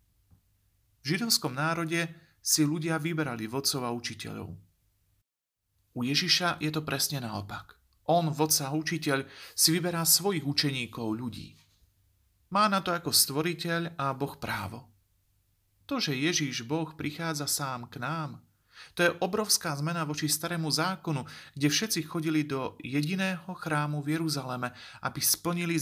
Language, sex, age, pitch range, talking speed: Slovak, male, 40-59, 110-160 Hz, 130 wpm